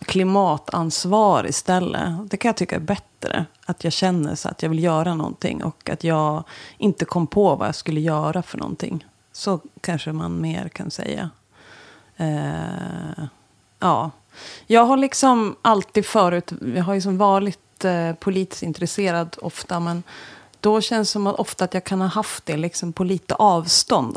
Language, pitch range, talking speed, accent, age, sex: English, 155-190 Hz, 155 wpm, Swedish, 30-49, female